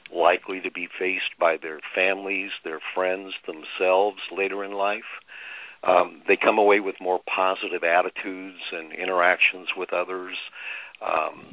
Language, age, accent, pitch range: English, 50-69, American, 95-105 Hz